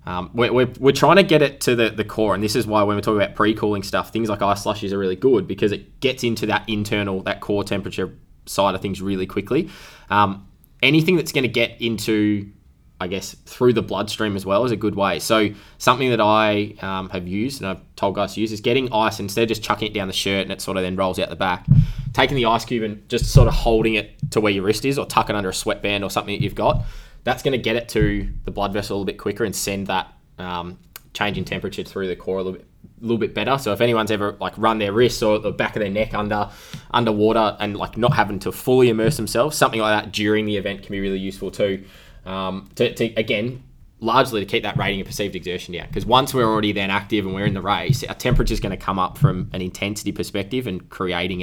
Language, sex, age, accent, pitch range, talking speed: English, male, 20-39, Australian, 95-115 Hz, 255 wpm